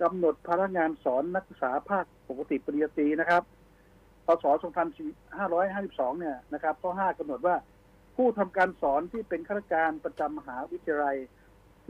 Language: Thai